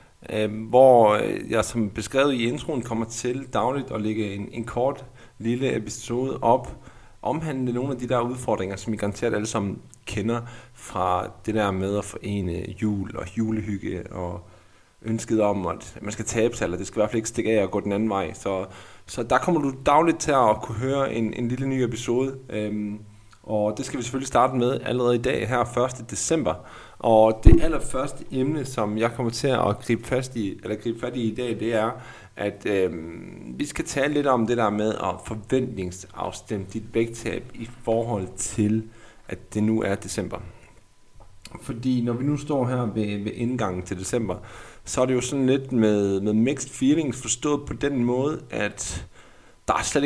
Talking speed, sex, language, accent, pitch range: 185 wpm, male, Danish, native, 105-125 Hz